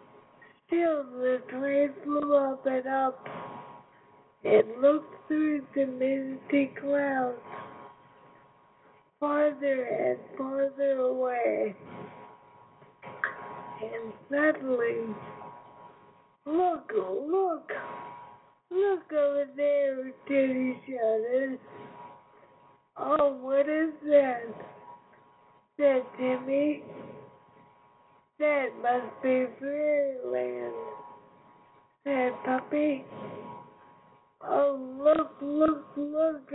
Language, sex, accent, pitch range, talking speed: English, female, American, 255-290 Hz, 70 wpm